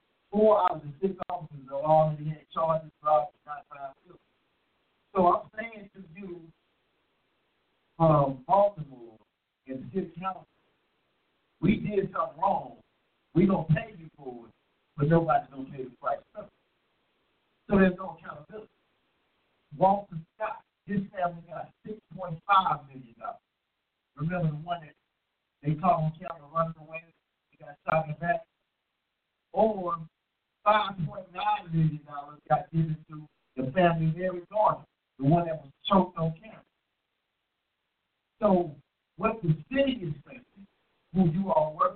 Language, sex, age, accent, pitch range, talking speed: English, male, 60-79, American, 150-190 Hz, 145 wpm